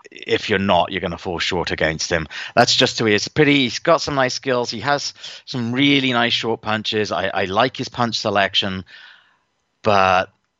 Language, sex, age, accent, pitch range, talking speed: English, male, 30-49, British, 100-135 Hz, 190 wpm